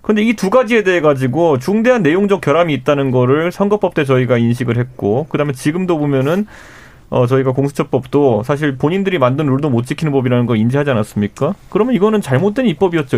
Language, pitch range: Korean, 130-195 Hz